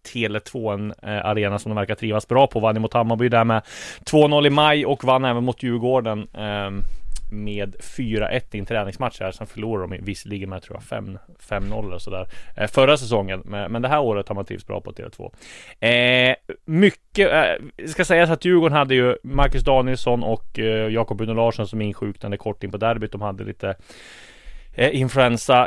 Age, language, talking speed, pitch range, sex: 20-39, Swedish, 175 wpm, 105-125 Hz, male